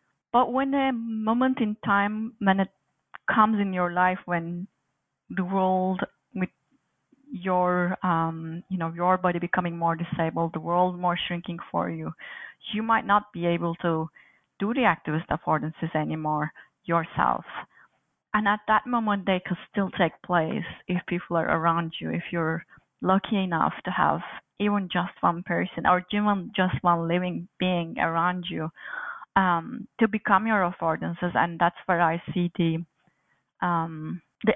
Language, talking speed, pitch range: English, 150 wpm, 170-200 Hz